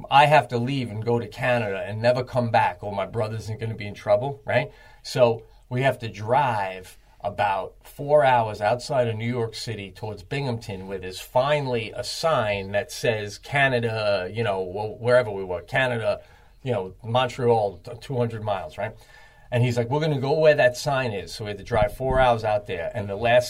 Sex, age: male, 40-59